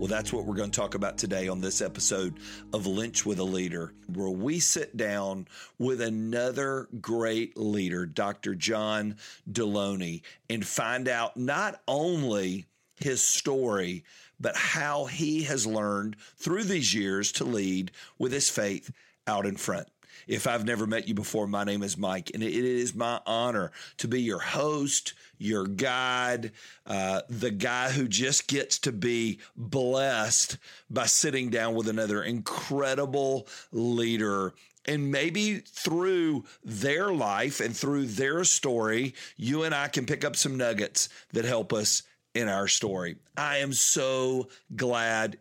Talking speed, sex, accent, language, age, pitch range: 150 wpm, male, American, English, 50-69, 105-140 Hz